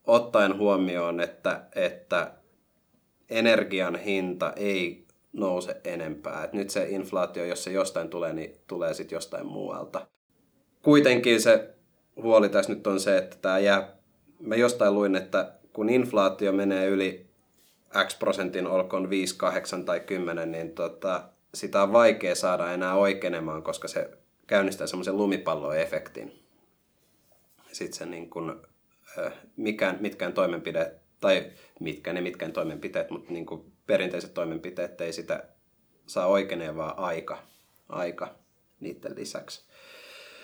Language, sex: Finnish, male